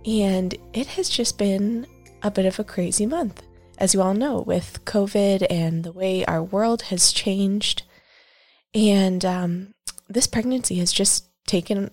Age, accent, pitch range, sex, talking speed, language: 20-39, American, 180-225 Hz, female, 155 wpm, English